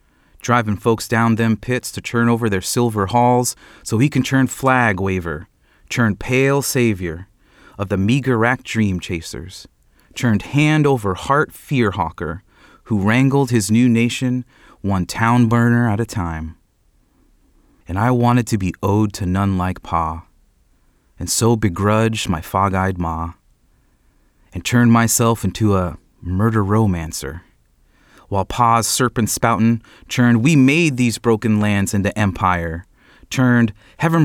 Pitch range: 90-115 Hz